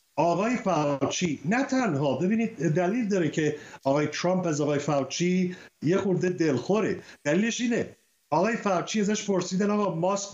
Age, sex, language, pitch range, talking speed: 50-69, male, Persian, 165-205 Hz, 140 wpm